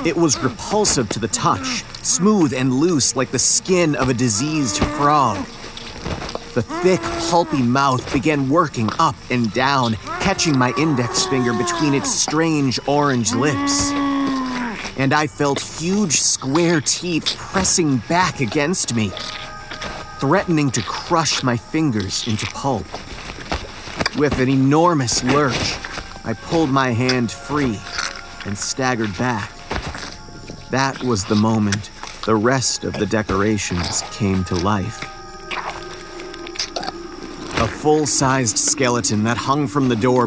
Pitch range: 115-150 Hz